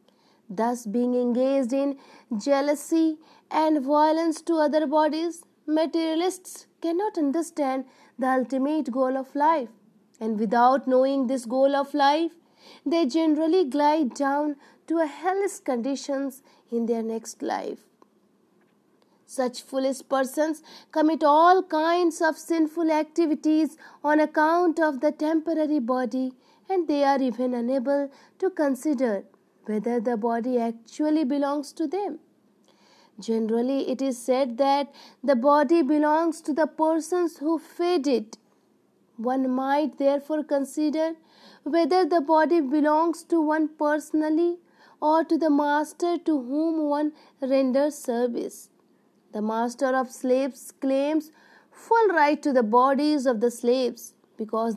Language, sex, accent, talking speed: English, female, Indian, 125 wpm